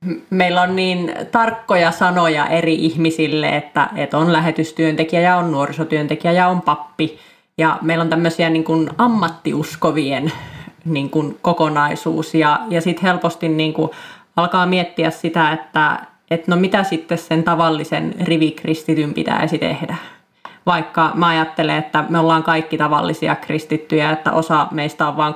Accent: native